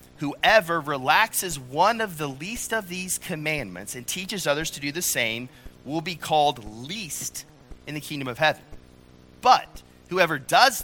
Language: English